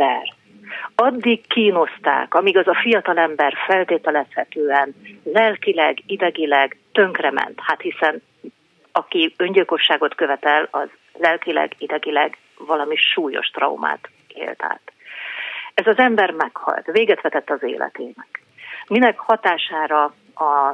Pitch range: 165-255 Hz